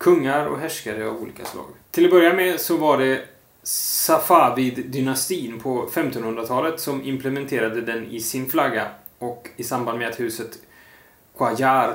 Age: 20-39